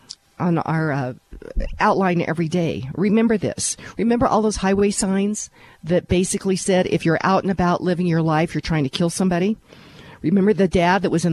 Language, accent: English, American